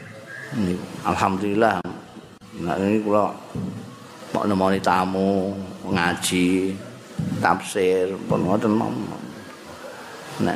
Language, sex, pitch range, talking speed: Indonesian, male, 95-125 Hz, 70 wpm